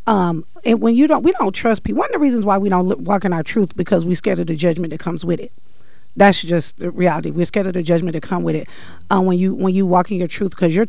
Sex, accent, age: female, American, 40-59